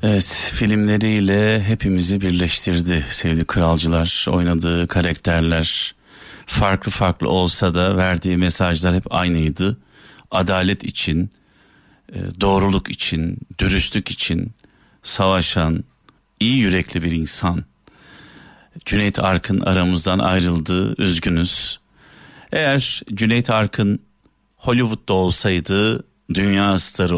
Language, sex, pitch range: Turkish, male, 90-105 Hz